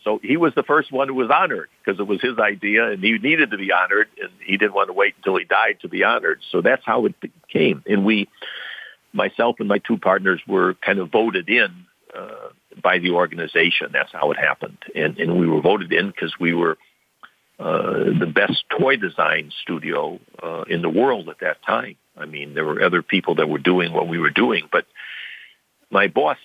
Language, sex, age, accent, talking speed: English, male, 60-79, American, 215 wpm